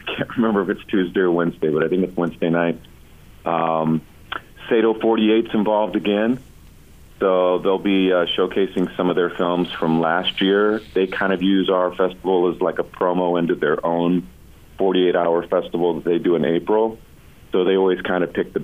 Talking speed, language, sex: 185 wpm, English, male